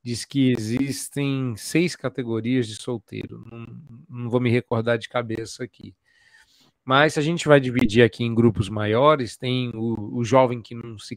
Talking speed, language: 165 wpm, Portuguese